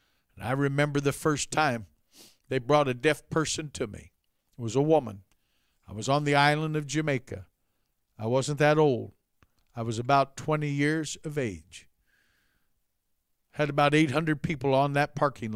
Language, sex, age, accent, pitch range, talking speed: English, male, 50-69, American, 130-175 Hz, 160 wpm